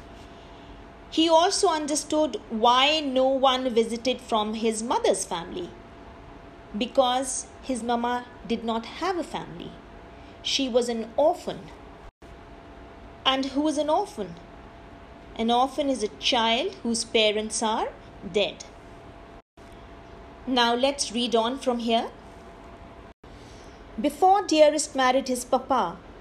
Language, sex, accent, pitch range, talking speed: English, female, Indian, 235-315 Hz, 110 wpm